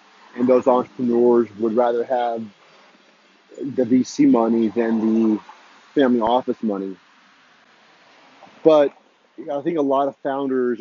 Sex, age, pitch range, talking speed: male, 30-49, 115-130 Hz, 115 wpm